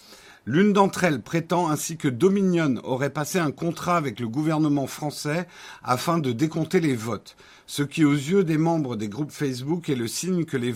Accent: French